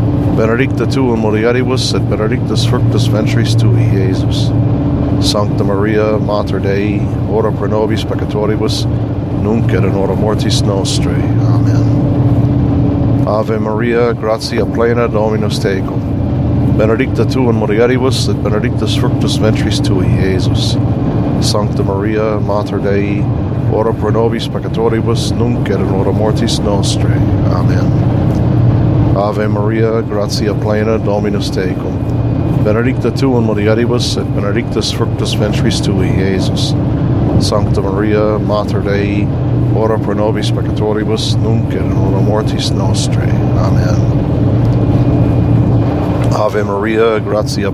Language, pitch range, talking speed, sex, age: English, 105-130 Hz, 105 wpm, male, 50-69